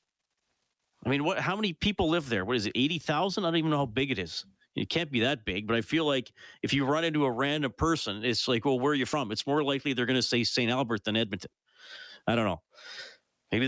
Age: 50-69